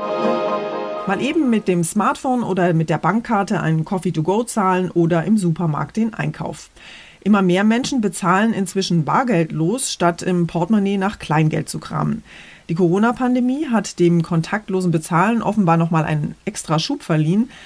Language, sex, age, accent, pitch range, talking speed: German, female, 30-49, German, 155-200 Hz, 150 wpm